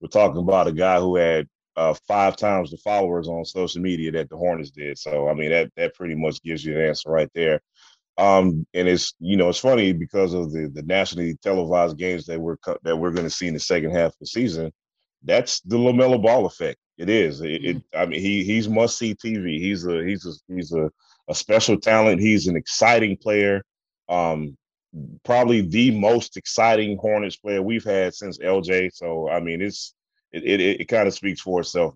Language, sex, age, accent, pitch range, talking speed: English, male, 30-49, American, 80-105 Hz, 210 wpm